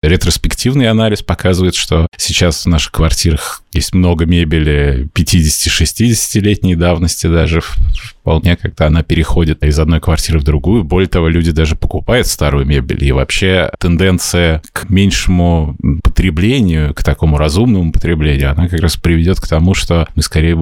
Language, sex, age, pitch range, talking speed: Russian, male, 20-39, 80-95 Hz, 145 wpm